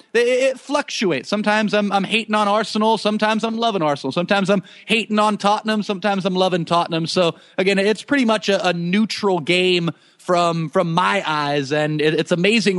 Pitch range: 165-230 Hz